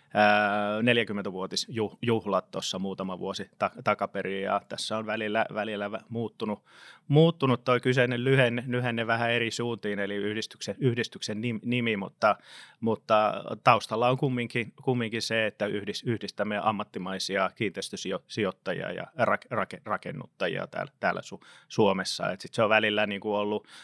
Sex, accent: male, native